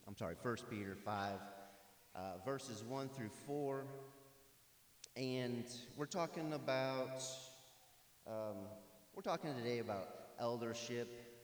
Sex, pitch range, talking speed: male, 95-125 Hz, 105 wpm